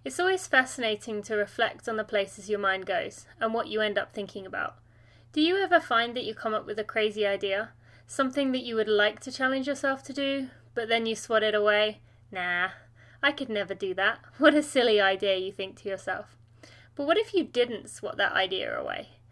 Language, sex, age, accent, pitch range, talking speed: English, female, 30-49, British, 195-255 Hz, 215 wpm